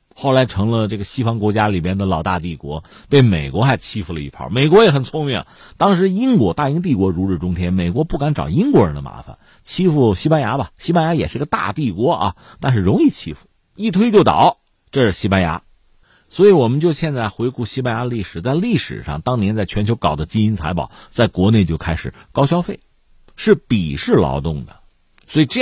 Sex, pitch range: male, 90-140 Hz